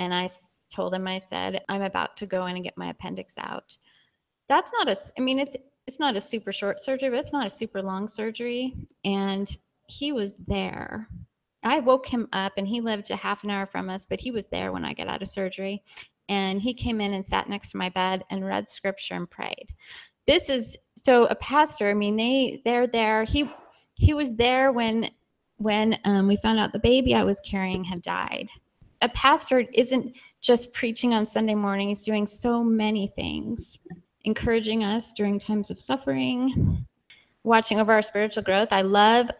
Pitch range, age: 190-230 Hz, 30-49